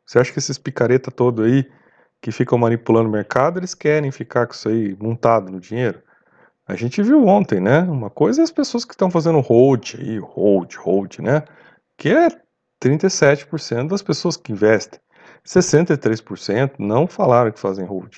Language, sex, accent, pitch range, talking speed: Portuguese, male, Brazilian, 110-160 Hz, 170 wpm